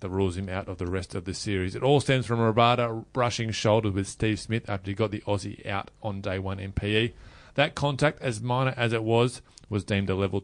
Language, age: English, 30-49